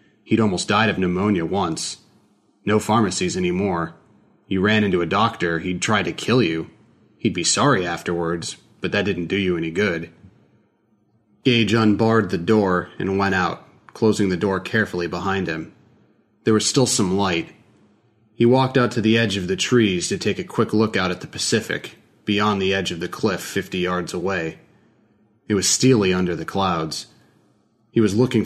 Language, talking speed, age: English, 175 wpm, 30-49